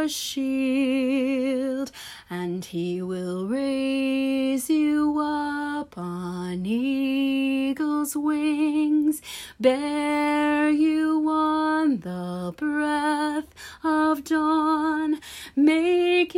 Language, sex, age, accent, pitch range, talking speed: English, female, 30-49, American, 265-380 Hz, 65 wpm